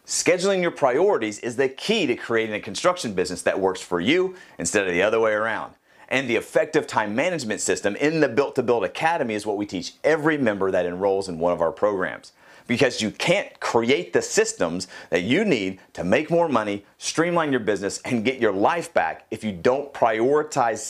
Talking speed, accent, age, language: 205 wpm, American, 40-59, English